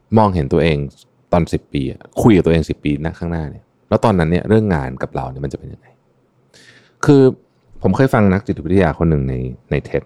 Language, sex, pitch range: Thai, male, 80-120 Hz